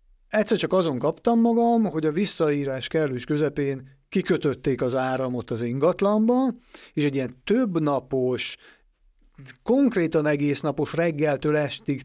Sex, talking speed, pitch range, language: male, 115 wpm, 135-175 Hz, Hungarian